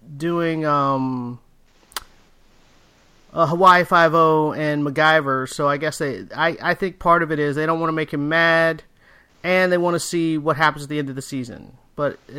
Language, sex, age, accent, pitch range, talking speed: English, male, 30-49, American, 155-195 Hz, 185 wpm